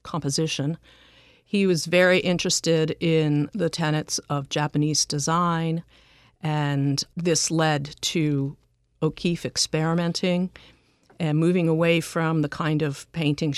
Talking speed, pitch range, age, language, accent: 110 wpm, 140-165 Hz, 50-69, English, American